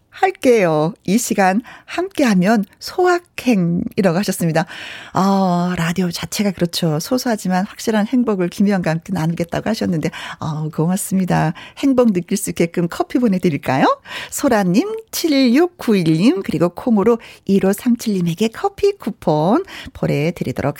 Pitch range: 180-270 Hz